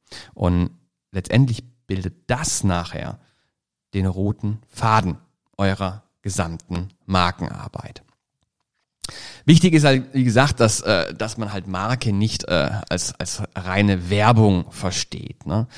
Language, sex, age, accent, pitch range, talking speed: German, male, 40-59, German, 95-125 Hz, 105 wpm